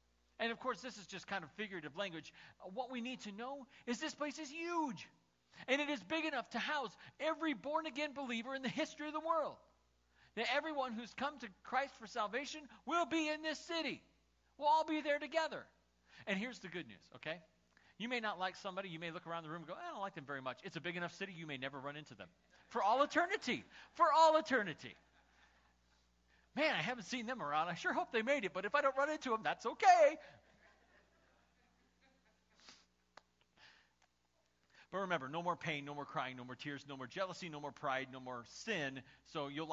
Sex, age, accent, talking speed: male, 40-59, American, 210 wpm